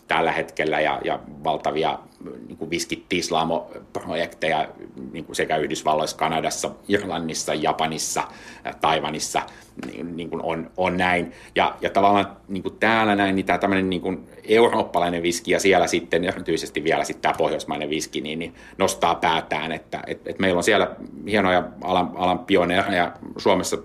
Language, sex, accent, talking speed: Finnish, male, native, 140 wpm